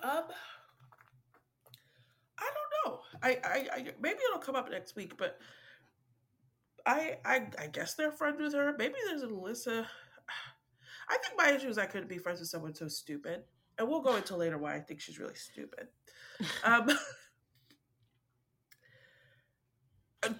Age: 30-49